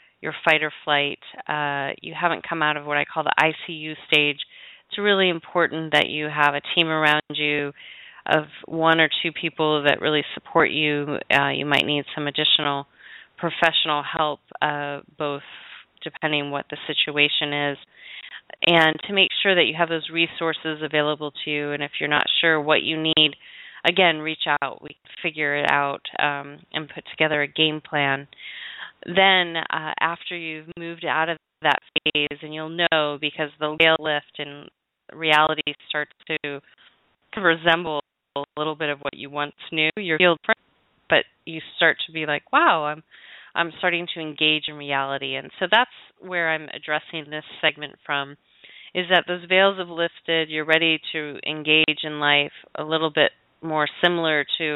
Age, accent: 30-49, American